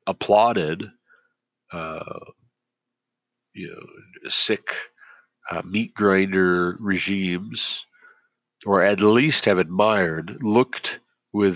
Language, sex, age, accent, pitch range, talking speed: English, male, 40-59, American, 90-120 Hz, 85 wpm